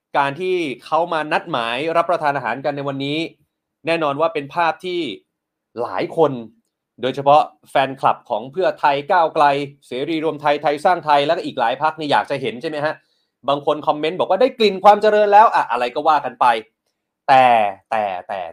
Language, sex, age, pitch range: Thai, male, 20-39, 140-180 Hz